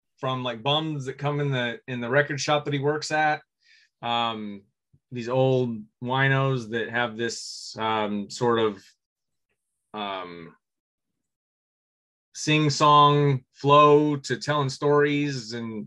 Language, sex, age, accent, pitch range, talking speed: English, male, 30-49, American, 115-145 Hz, 125 wpm